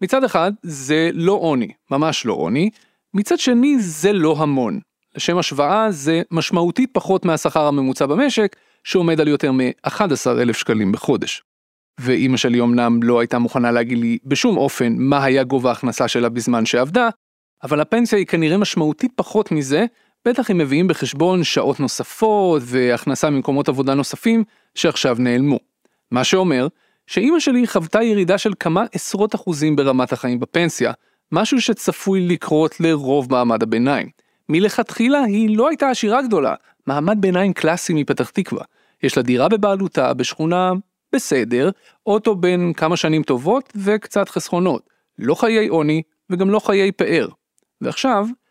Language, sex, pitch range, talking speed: Hebrew, male, 140-215 Hz, 140 wpm